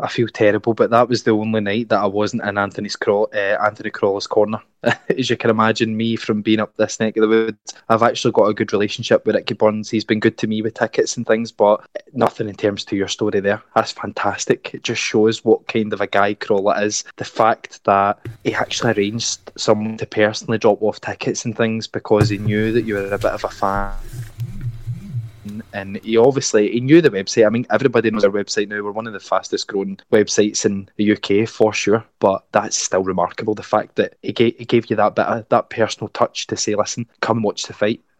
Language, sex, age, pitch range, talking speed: English, male, 20-39, 105-120 Hz, 225 wpm